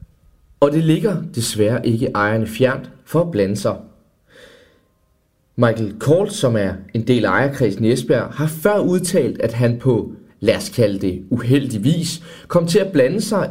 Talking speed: 155 wpm